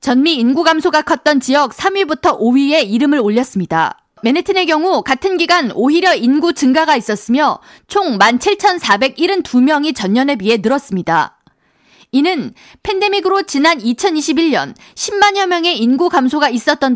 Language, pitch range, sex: Korean, 250-350 Hz, female